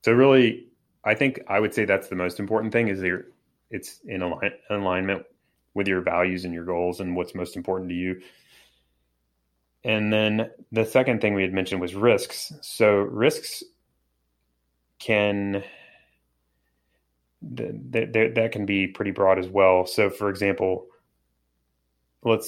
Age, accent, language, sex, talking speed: 30-49, American, English, male, 150 wpm